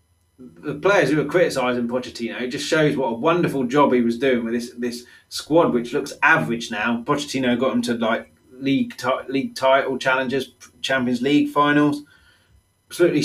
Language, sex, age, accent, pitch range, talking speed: English, male, 30-49, British, 100-145 Hz, 170 wpm